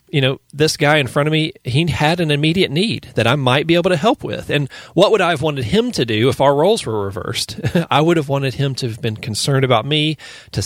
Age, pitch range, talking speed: 40-59, 115-150 Hz, 265 wpm